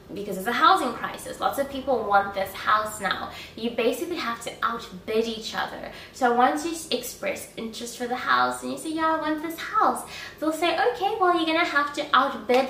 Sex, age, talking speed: female, 20-39, 210 wpm